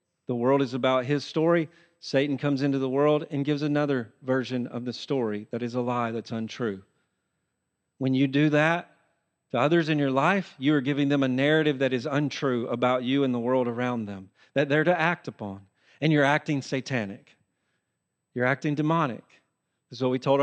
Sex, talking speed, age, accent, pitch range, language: male, 195 wpm, 40-59, American, 125-170 Hz, English